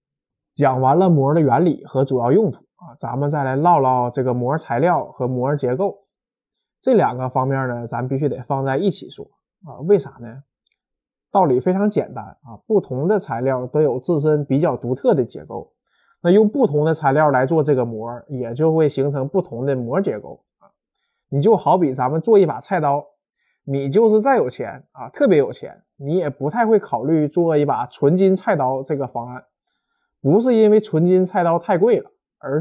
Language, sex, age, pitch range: Chinese, male, 20-39, 135-190 Hz